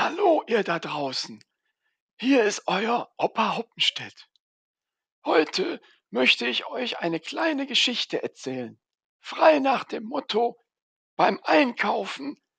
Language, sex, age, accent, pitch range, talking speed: German, male, 60-79, German, 195-275 Hz, 110 wpm